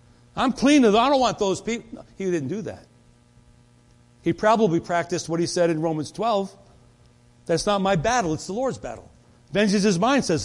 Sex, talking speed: male, 185 wpm